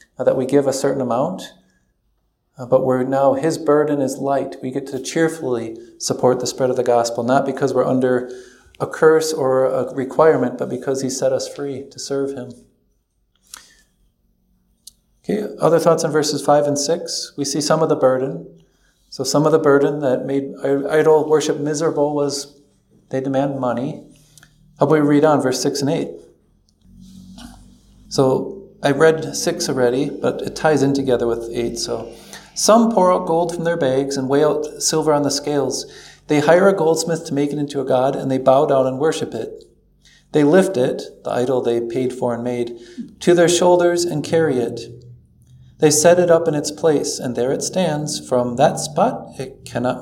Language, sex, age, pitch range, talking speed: English, male, 40-59, 125-155 Hz, 185 wpm